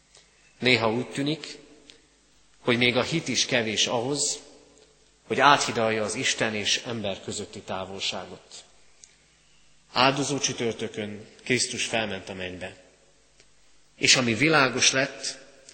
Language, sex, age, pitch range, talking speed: Hungarian, male, 30-49, 115-150 Hz, 105 wpm